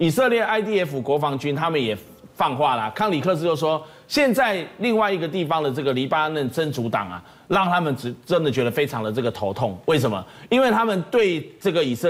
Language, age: Chinese, 30-49